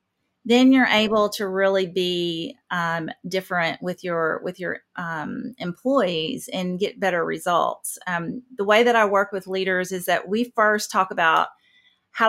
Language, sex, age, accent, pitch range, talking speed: English, female, 40-59, American, 185-230 Hz, 160 wpm